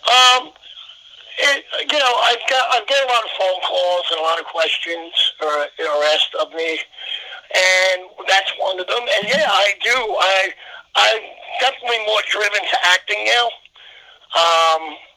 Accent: American